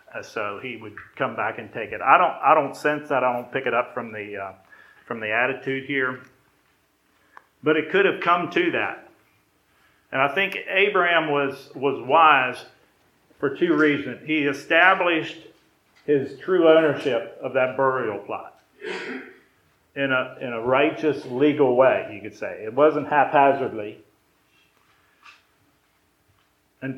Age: 50-69